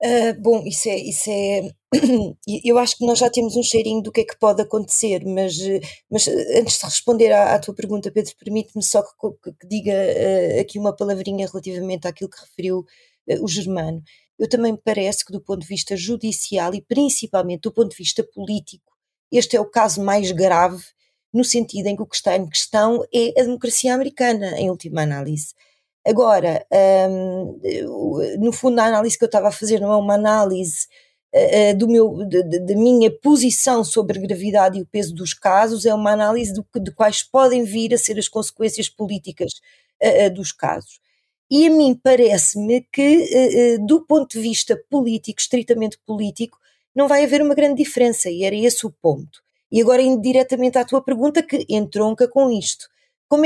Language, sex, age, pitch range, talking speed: Portuguese, female, 20-39, 195-245 Hz, 180 wpm